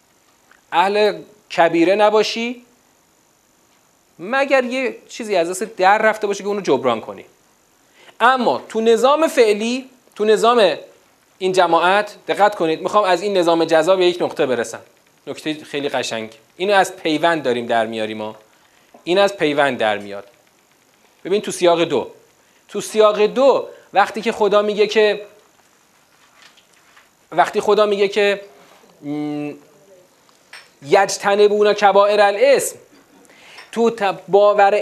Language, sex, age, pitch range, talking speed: Persian, male, 40-59, 185-240 Hz, 120 wpm